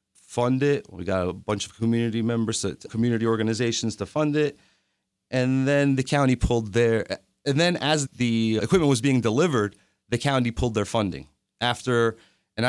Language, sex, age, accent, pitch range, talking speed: English, male, 30-49, American, 110-130 Hz, 165 wpm